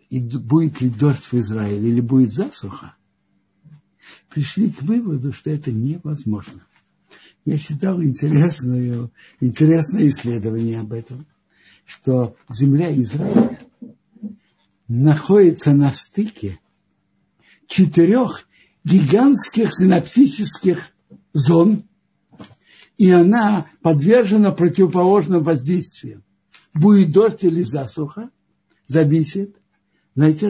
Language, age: Russian, 60-79